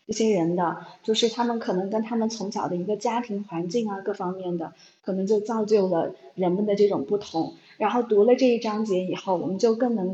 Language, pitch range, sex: Chinese, 190-245 Hz, female